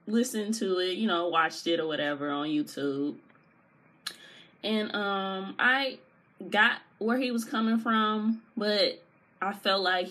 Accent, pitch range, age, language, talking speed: American, 175-225 Hz, 20-39, English, 140 wpm